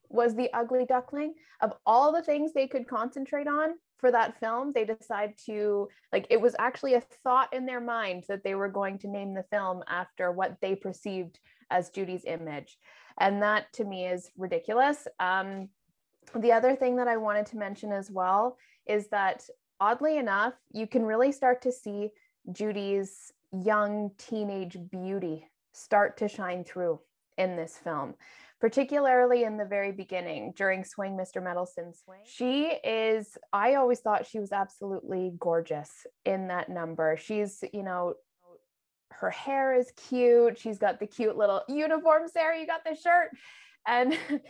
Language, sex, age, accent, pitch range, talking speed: English, female, 20-39, American, 195-270 Hz, 165 wpm